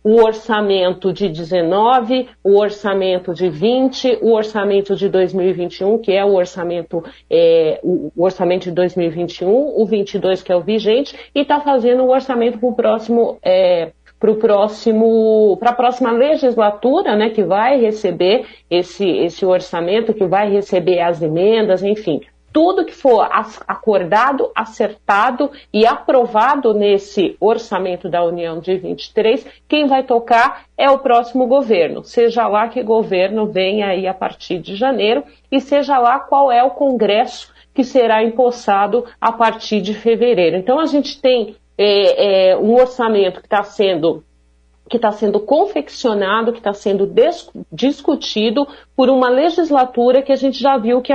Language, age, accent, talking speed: Portuguese, 50-69, Brazilian, 140 wpm